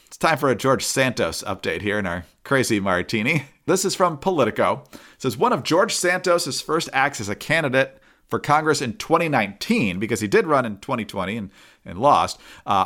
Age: 40-59